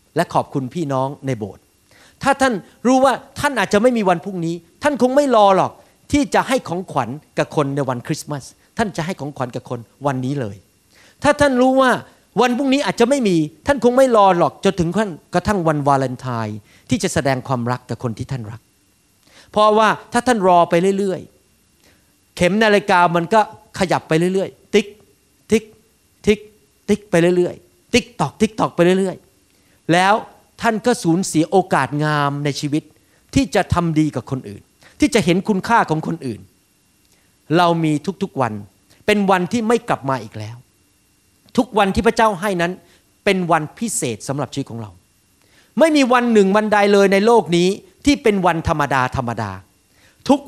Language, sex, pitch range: Thai, male, 130-215 Hz